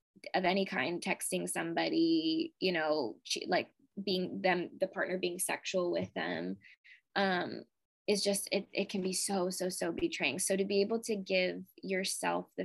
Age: 20-39